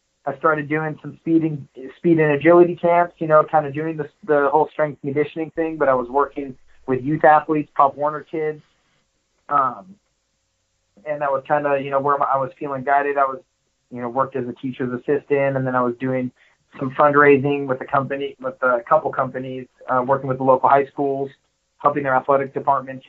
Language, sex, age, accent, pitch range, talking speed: English, male, 20-39, American, 135-155 Hz, 205 wpm